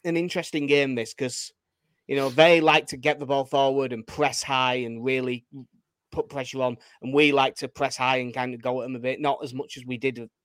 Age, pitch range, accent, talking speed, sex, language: 30-49, 125-160 Hz, British, 240 wpm, male, English